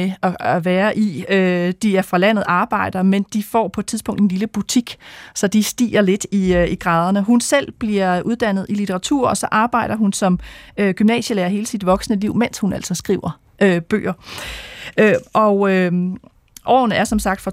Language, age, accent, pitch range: Danish, 30-49, native, 180-220 Hz